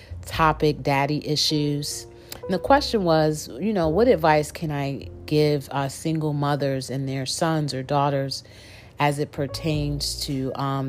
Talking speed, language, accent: 150 wpm, English, American